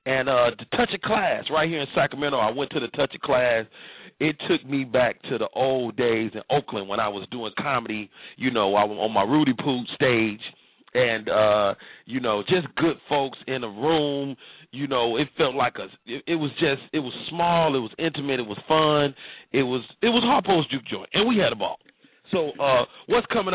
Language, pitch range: English, 115-150 Hz